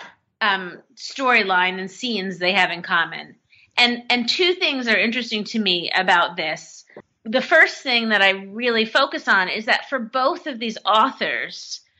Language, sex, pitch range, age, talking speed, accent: English, female, 195-240 Hz, 30-49, 165 wpm, American